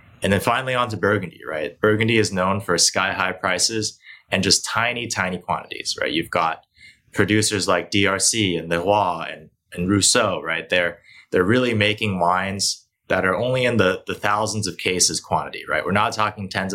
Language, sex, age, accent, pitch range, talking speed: English, male, 20-39, American, 85-105 Hz, 185 wpm